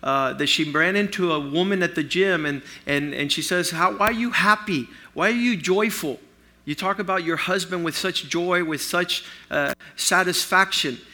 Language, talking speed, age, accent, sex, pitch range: English, 185 wpm, 50-69, American, male, 145-180 Hz